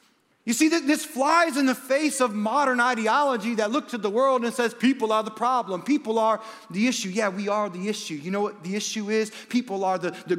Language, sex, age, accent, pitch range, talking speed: English, male, 40-59, American, 230-305 Hz, 230 wpm